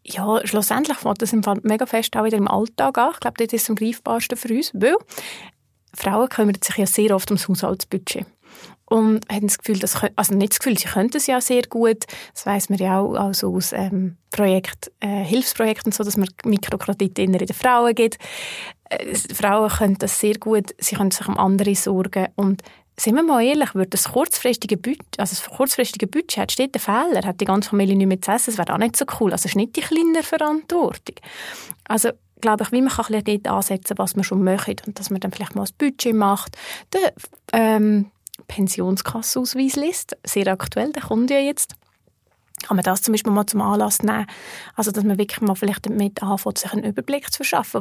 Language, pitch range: German, 195-230 Hz